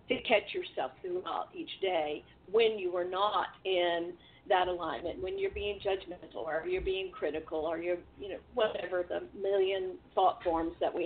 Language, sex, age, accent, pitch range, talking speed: English, female, 50-69, American, 190-250 Hz, 175 wpm